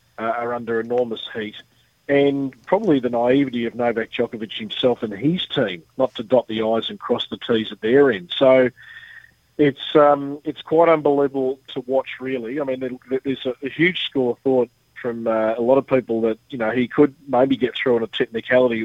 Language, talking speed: English, 190 wpm